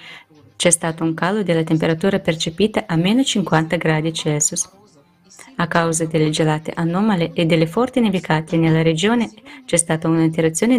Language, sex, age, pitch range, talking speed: Italian, female, 20-39, 165-205 Hz, 135 wpm